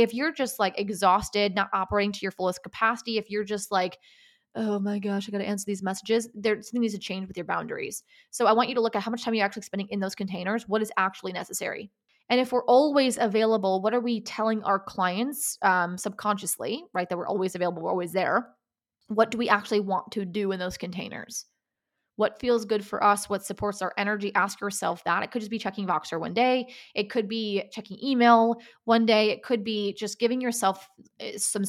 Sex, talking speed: female, 220 wpm